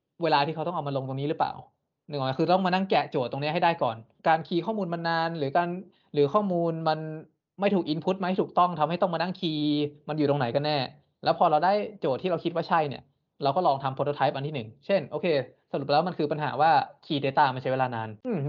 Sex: male